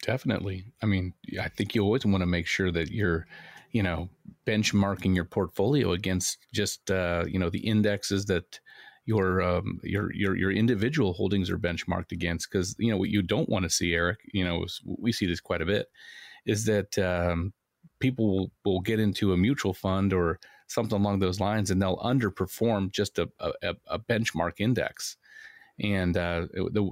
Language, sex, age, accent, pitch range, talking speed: English, male, 30-49, American, 90-105 Hz, 180 wpm